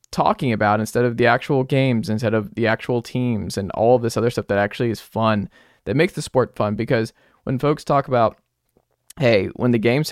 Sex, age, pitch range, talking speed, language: male, 20-39, 110-145 Hz, 215 wpm, English